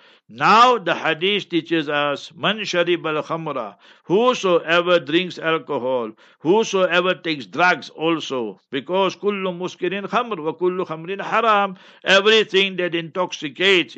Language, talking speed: English, 110 wpm